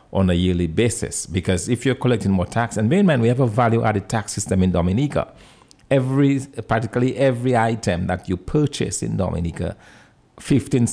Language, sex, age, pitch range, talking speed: English, male, 50-69, 95-120 Hz, 175 wpm